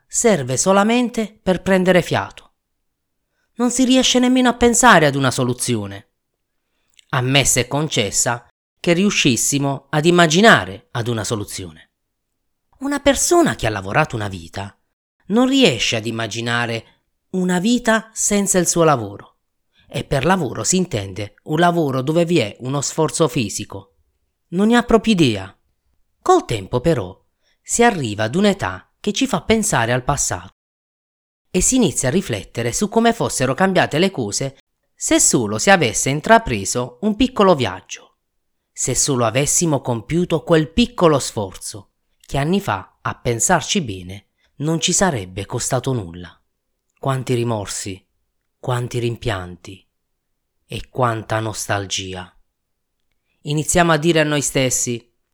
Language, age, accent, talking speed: Italian, 30-49, native, 130 wpm